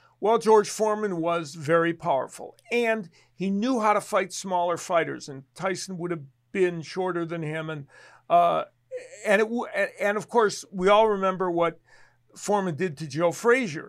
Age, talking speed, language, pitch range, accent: 50-69, 170 wpm, English, 165-195 Hz, American